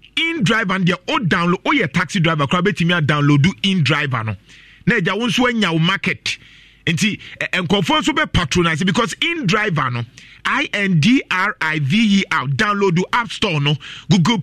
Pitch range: 145-200 Hz